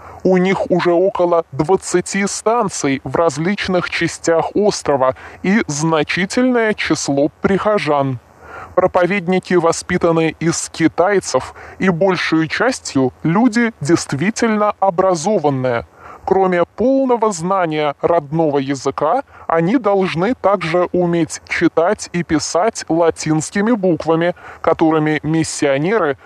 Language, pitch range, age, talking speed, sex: Russian, 150-195 Hz, 20-39, 90 wpm, female